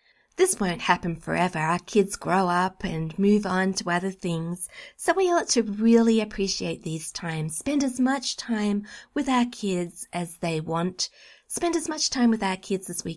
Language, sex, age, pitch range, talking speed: English, female, 30-49, 175-230 Hz, 185 wpm